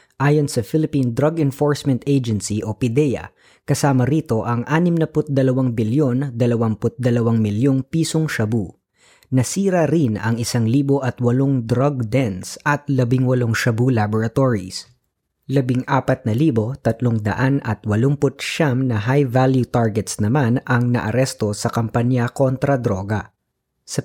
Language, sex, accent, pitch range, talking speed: Filipino, female, native, 110-140 Hz, 130 wpm